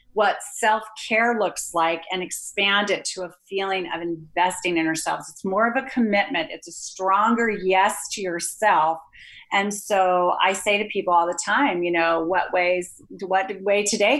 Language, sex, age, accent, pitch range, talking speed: English, female, 40-59, American, 185-230 Hz, 175 wpm